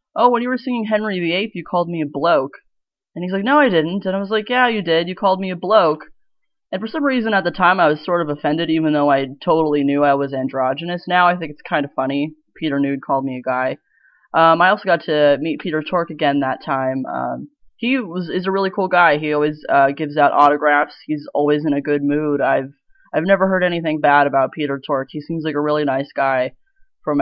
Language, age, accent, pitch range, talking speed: English, 20-39, American, 140-180 Hz, 245 wpm